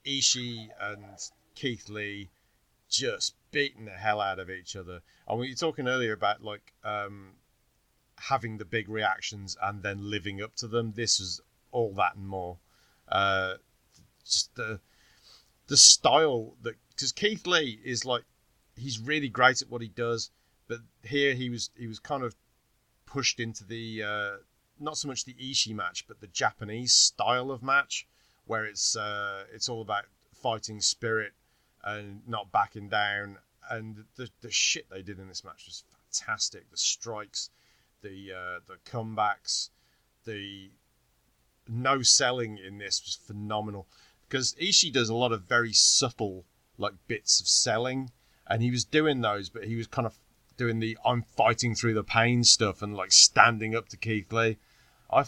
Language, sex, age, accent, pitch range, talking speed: English, male, 30-49, British, 105-120 Hz, 165 wpm